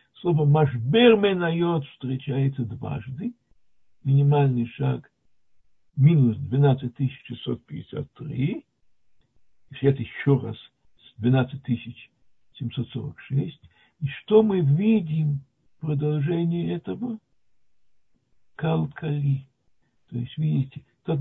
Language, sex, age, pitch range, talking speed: Russian, male, 60-79, 125-155 Hz, 70 wpm